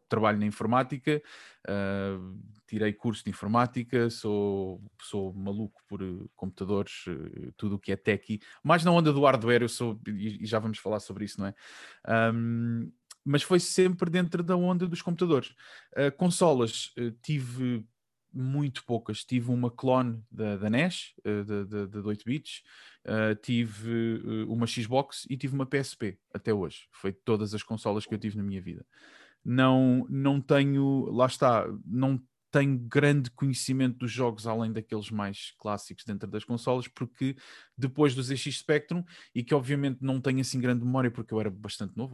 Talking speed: 160 wpm